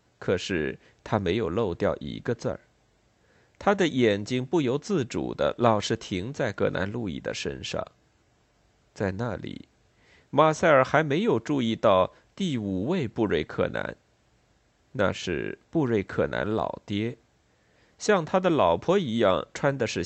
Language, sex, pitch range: Chinese, male, 110-155 Hz